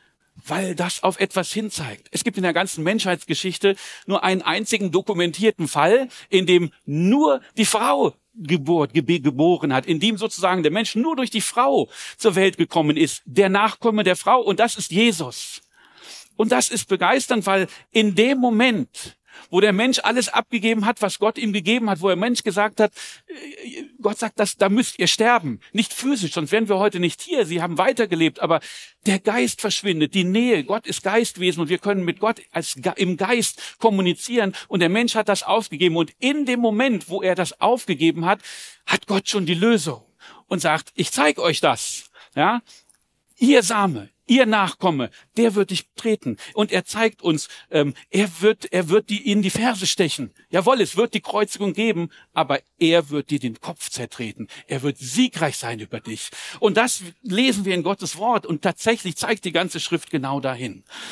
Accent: German